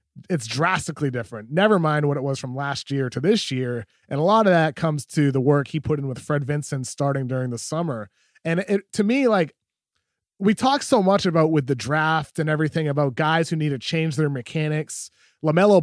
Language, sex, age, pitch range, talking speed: English, male, 30-49, 145-180 Hz, 210 wpm